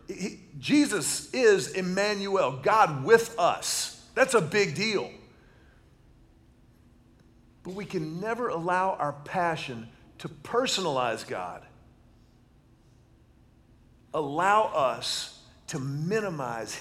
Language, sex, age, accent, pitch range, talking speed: English, male, 40-59, American, 140-205 Hz, 85 wpm